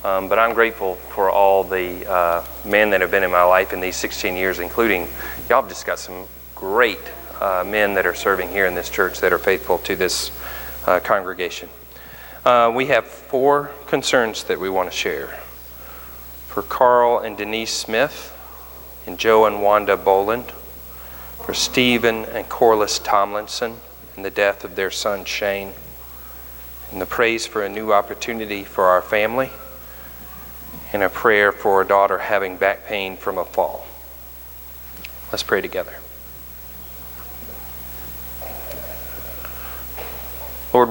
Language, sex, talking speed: English, male, 145 wpm